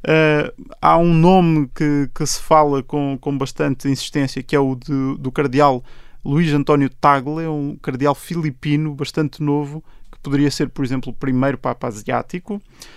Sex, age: male, 20-39